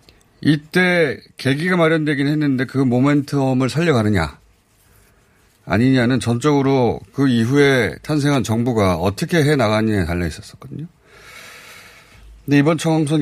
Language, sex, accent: Korean, male, native